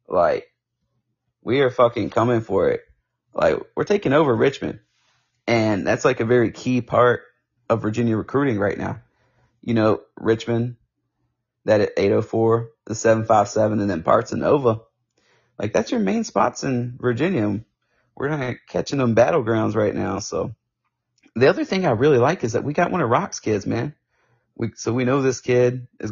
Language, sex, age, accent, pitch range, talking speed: English, male, 30-49, American, 110-125 Hz, 170 wpm